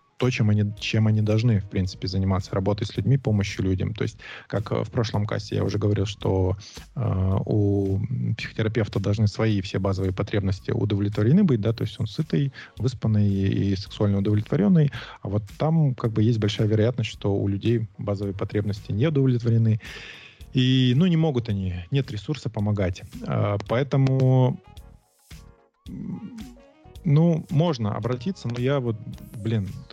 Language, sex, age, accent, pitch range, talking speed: Russian, male, 20-39, native, 100-125 Hz, 150 wpm